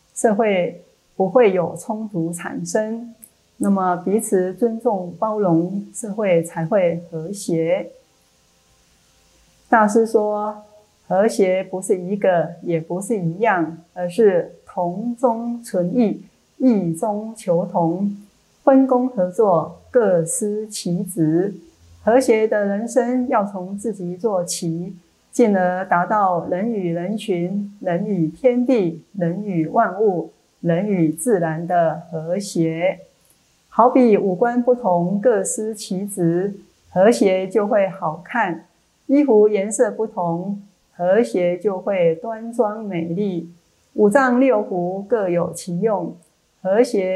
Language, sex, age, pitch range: Chinese, female, 30-49, 175-225 Hz